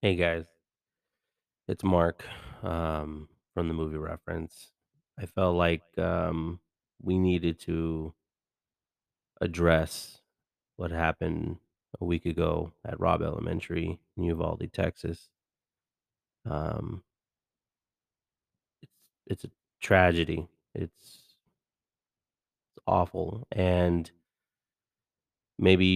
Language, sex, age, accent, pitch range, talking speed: English, male, 30-49, American, 85-95 Hz, 90 wpm